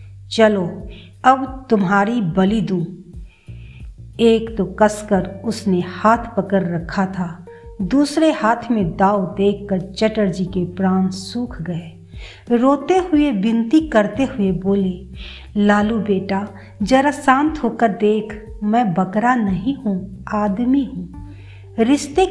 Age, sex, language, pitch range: 50-69, female, Hindi, 180-235 Hz